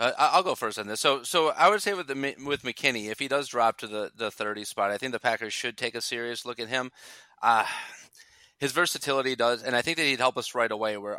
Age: 30-49